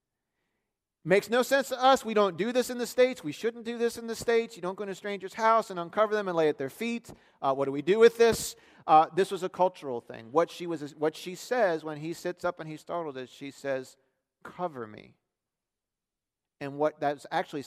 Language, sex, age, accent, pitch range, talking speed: English, male, 40-59, American, 120-165 Hz, 235 wpm